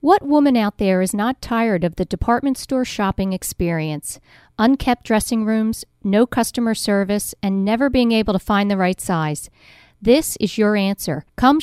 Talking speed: 170 wpm